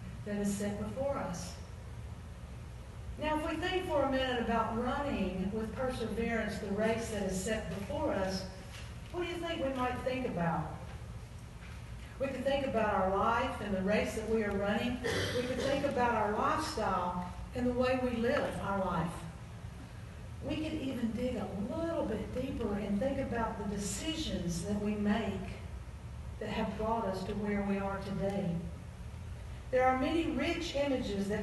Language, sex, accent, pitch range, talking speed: English, female, American, 205-255 Hz, 170 wpm